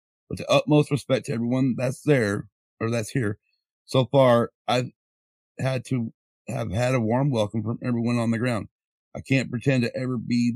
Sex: male